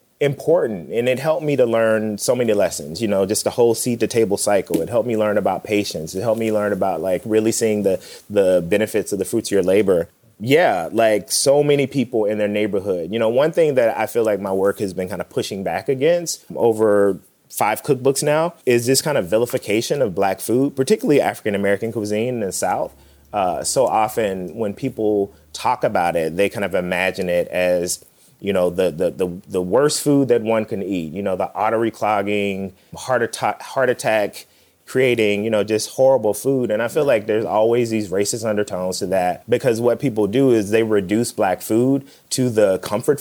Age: 30-49